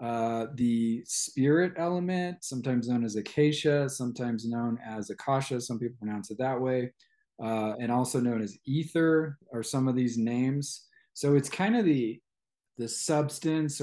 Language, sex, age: English, male, 20-39